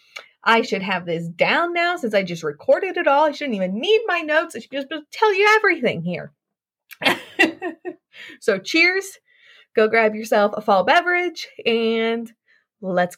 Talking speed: 160 wpm